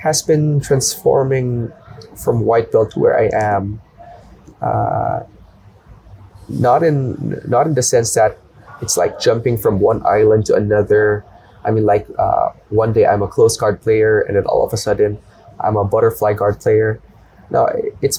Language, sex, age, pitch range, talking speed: English, male, 20-39, 105-130 Hz, 165 wpm